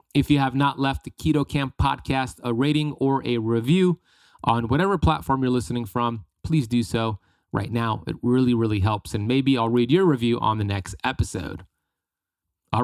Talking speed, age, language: 180 wpm, 30-49, English